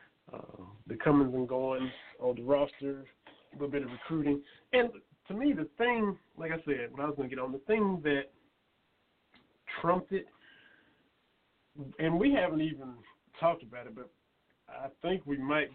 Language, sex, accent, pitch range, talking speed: English, male, American, 130-155 Hz, 170 wpm